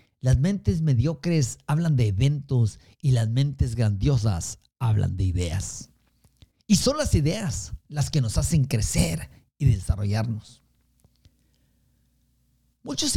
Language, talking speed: Spanish, 115 wpm